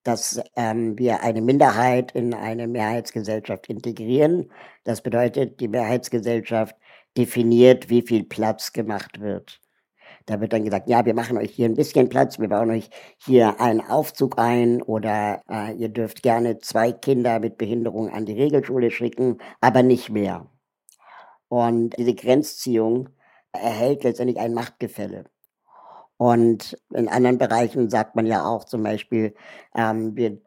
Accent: German